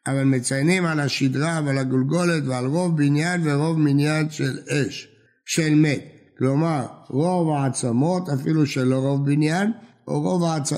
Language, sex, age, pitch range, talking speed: Hebrew, male, 60-79, 135-170 Hz, 145 wpm